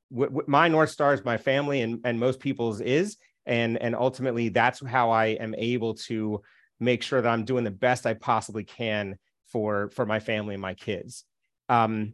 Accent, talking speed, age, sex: American, 190 wpm, 30-49, male